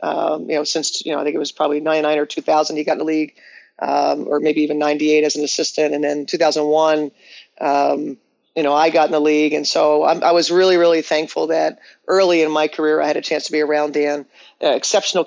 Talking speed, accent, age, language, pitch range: 235 wpm, American, 40-59, English, 150-165 Hz